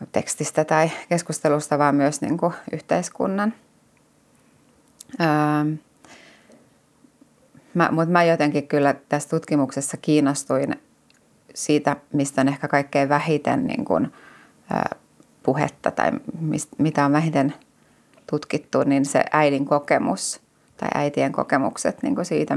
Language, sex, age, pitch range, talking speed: Finnish, female, 30-49, 145-160 Hz, 90 wpm